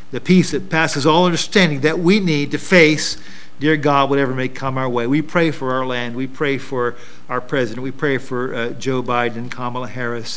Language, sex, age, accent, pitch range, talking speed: English, male, 50-69, American, 120-140 Hz, 215 wpm